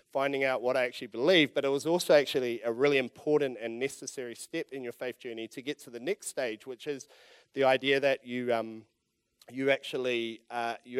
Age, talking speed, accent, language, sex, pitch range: 30-49, 205 wpm, Australian, English, male, 120-145 Hz